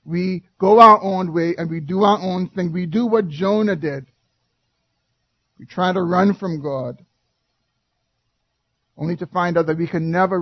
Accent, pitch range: American, 135-180 Hz